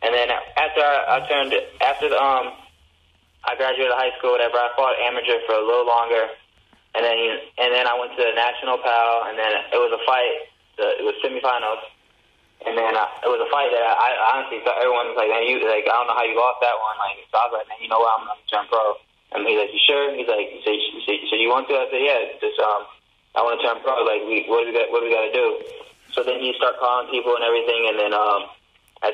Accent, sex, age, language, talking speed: American, male, 10-29, English, 270 wpm